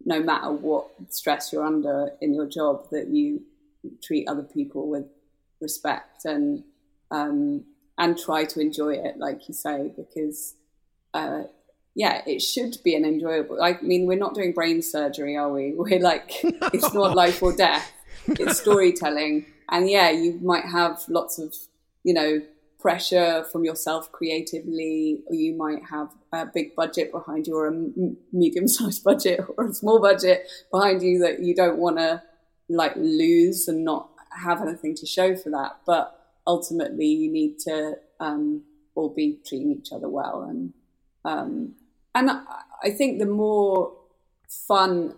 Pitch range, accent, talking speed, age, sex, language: 160-220 Hz, British, 160 wpm, 20-39, female, English